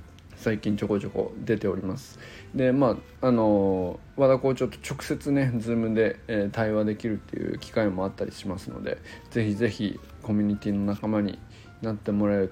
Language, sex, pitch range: Japanese, male, 100-125 Hz